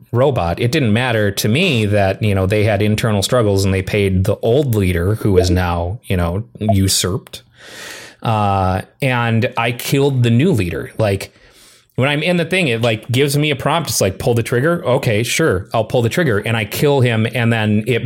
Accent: American